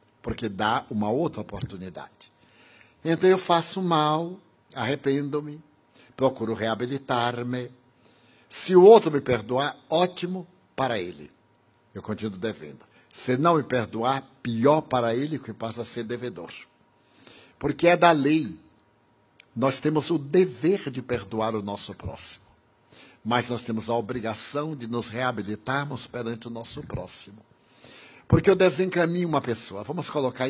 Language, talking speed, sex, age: Portuguese, 130 wpm, male, 60-79